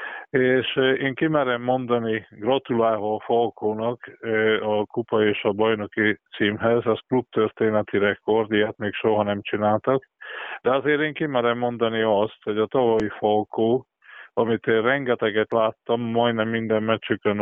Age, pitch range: 20-39, 110-120 Hz